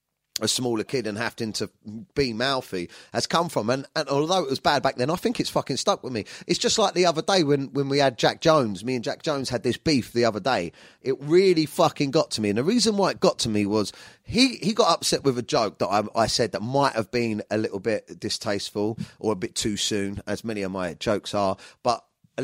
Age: 30-49